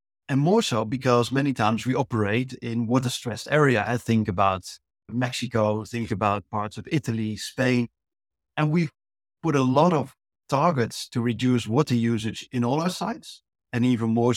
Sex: male